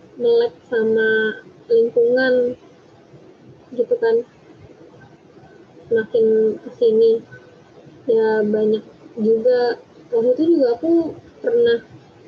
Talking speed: 75 wpm